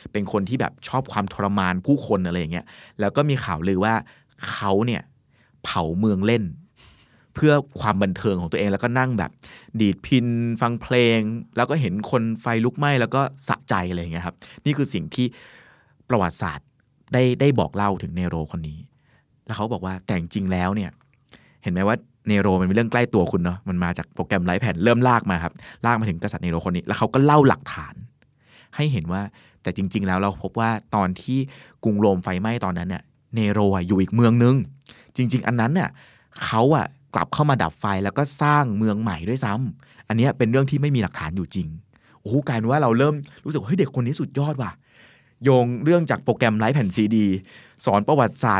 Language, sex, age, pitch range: Thai, male, 20-39, 100-130 Hz